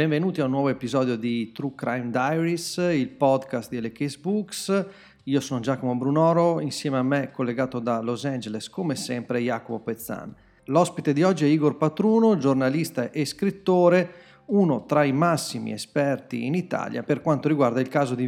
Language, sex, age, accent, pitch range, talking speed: Italian, male, 40-59, native, 120-155 Hz, 165 wpm